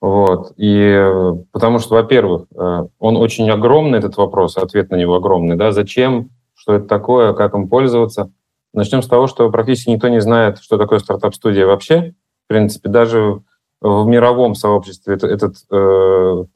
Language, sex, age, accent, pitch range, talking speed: Russian, male, 30-49, native, 105-130 Hz, 155 wpm